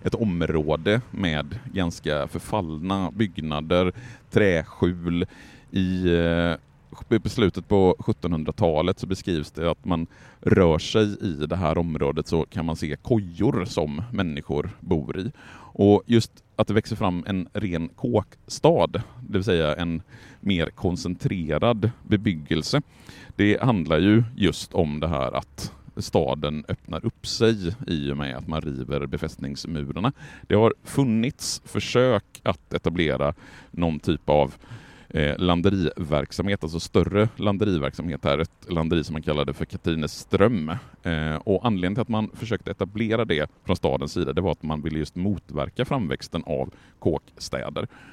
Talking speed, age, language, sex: 135 wpm, 30-49, Swedish, male